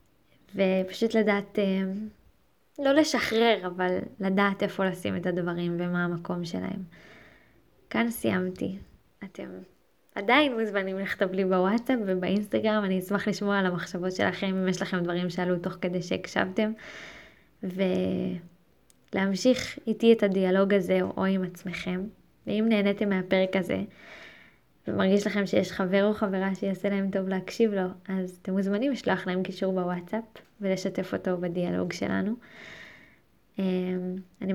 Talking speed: 120 wpm